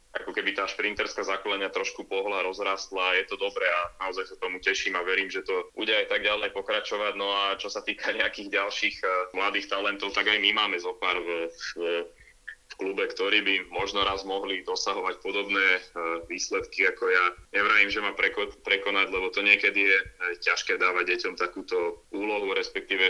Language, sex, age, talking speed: Slovak, male, 20-39, 185 wpm